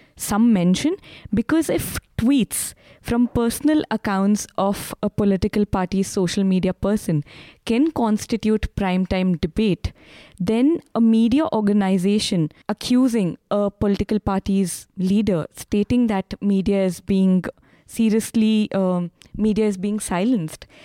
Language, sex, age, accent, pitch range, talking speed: English, female, 20-39, Indian, 185-220 Hz, 115 wpm